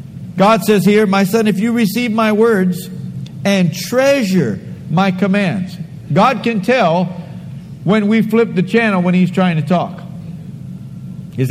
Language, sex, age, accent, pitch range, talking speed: English, male, 50-69, American, 175-220 Hz, 145 wpm